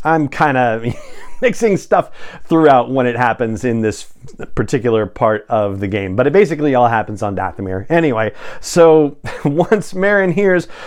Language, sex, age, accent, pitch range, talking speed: English, male, 30-49, American, 115-150 Hz, 155 wpm